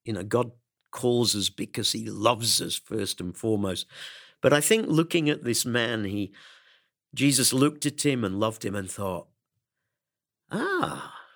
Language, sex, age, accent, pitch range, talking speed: English, male, 50-69, British, 100-145 Hz, 160 wpm